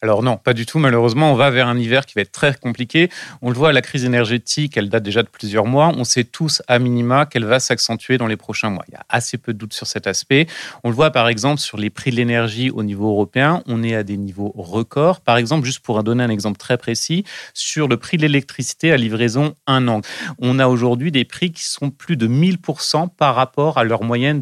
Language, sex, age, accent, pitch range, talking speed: French, male, 30-49, French, 120-155 Hz, 250 wpm